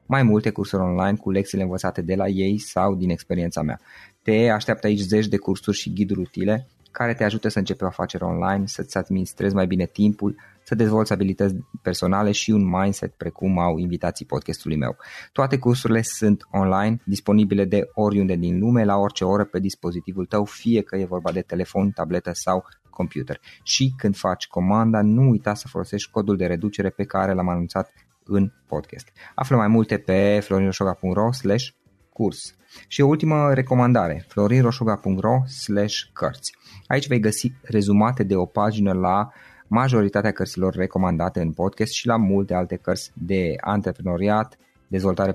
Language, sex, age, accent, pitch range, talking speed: Romanian, male, 20-39, native, 95-110 Hz, 155 wpm